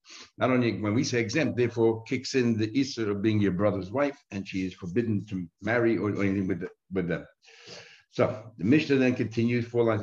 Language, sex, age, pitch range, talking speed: English, male, 60-79, 100-130 Hz, 215 wpm